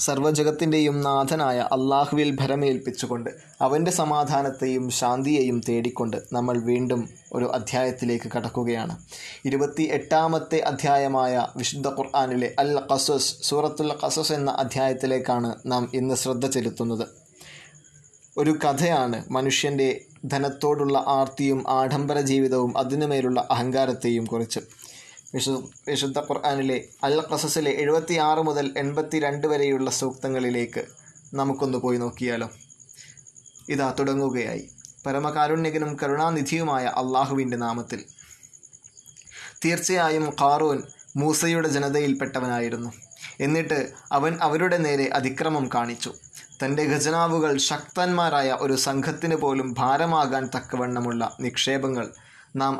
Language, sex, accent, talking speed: Malayalam, male, native, 90 wpm